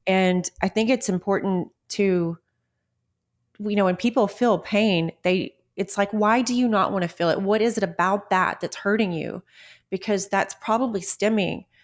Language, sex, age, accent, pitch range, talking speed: English, female, 30-49, American, 180-215 Hz, 175 wpm